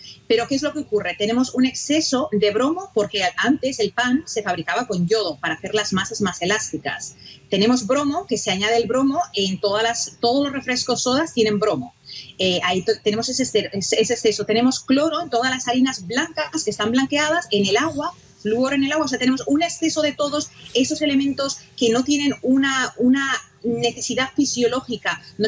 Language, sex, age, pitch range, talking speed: Spanish, female, 30-49, 210-265 Hz, 195 wpm